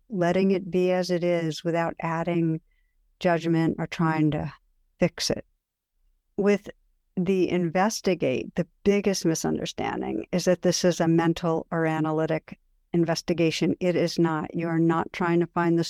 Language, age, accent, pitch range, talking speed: English, 60-79, American, 165-180 Hz, 145 wpm